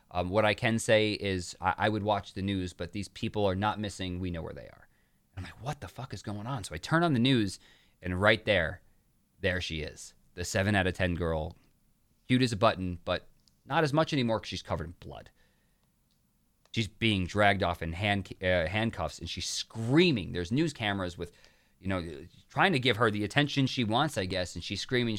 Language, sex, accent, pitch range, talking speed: English, male, American, 95-135 Hz, 220 wpm